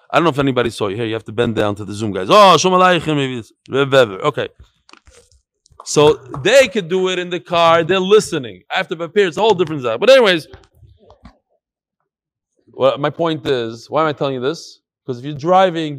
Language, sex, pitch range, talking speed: English, male, 145-230 Hz, 205 wpm